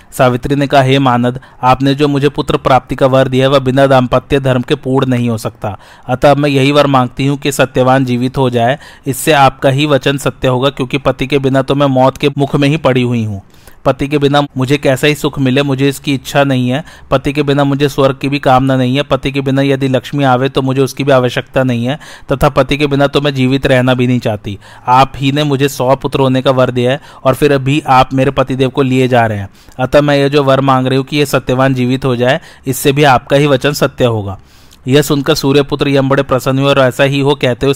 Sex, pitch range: male, 130-140 Hz